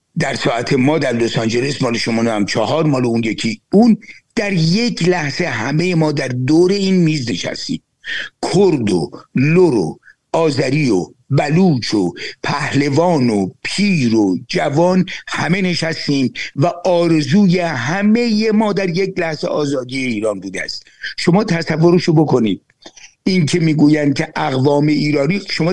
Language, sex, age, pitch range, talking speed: Persian, male, 60-79, 125-180 Hz, 140 wpm